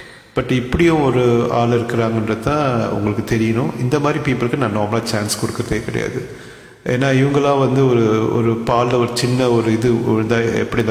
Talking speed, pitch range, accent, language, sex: 140 wpm, 110-125 Hz, Indian, English, male